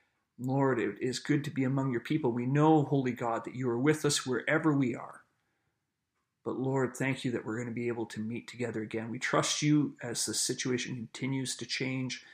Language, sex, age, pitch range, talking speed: English, male, 40-59, 120-135 Hz, 215 wpm